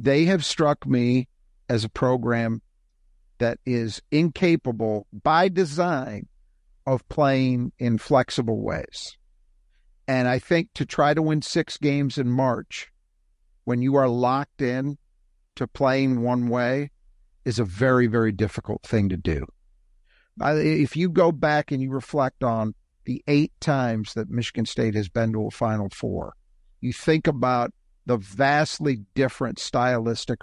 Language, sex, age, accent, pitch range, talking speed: English, male, 50-69, American, 110-150 Hz, 140 wpm